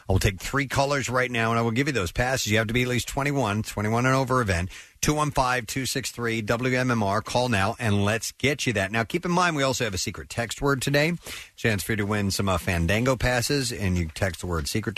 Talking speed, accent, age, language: 240 wpm, American, 50-69, English